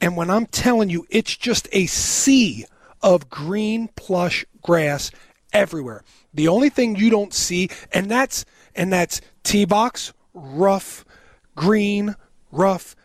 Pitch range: 175-225 Hz